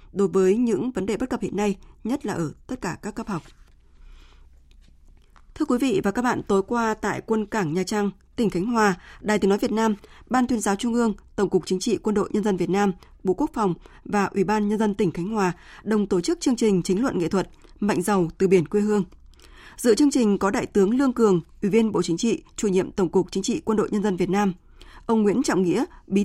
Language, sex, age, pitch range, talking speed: Vietnamese, female, 20-39, 185-225 Hz, 250 wpm